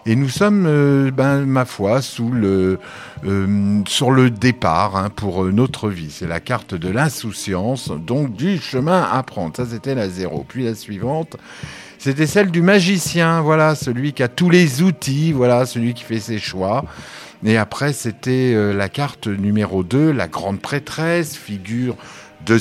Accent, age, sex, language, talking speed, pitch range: French, 50-69, male, French, 165 wpm, 105-150 Hz